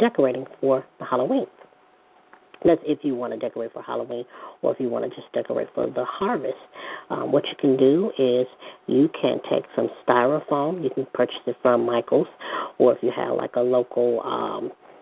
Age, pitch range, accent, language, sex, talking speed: 40-59, 125-140 Hz, American, English, female, 190 wpm